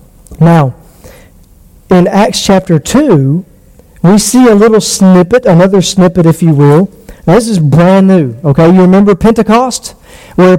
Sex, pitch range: male, 165-225 Hz